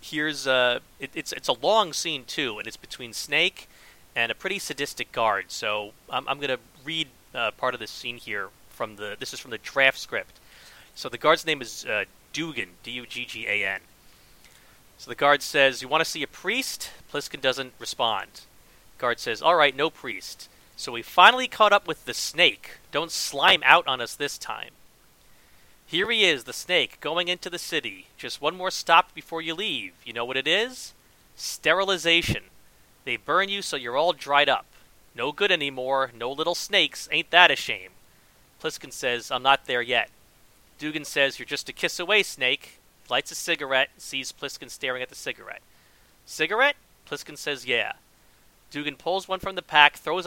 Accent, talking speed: American, 185 wpm